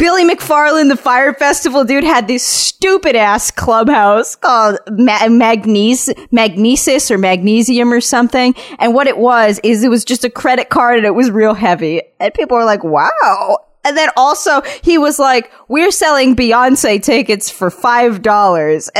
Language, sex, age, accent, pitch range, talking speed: English, female, 20-39, American, 210-285 Hz, 165 wpm